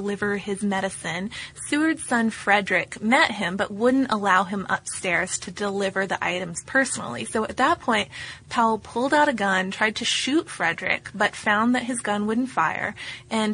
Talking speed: 175 wpm